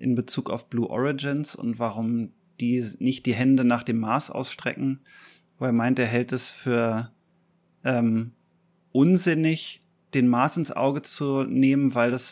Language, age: German, 30-49